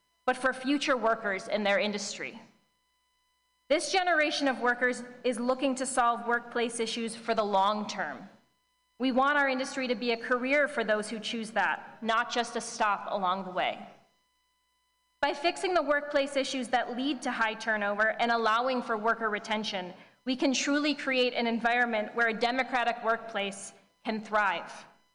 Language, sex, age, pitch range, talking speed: English, female, 30-49, 215-275 Hz, 160 wpm